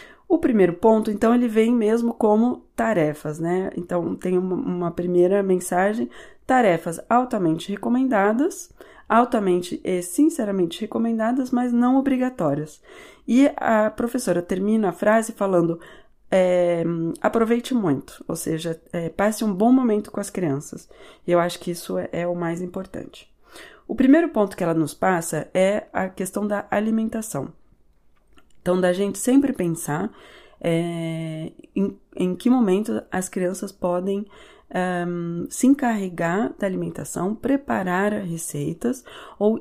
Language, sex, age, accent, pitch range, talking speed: Portuguese, female, 20-39, Brazilian, 170-225 Hz, 130 wpm